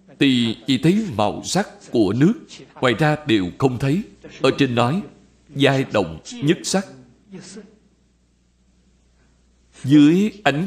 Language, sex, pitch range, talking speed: Vietnamese, male, 110-175 Hz, 120 wpm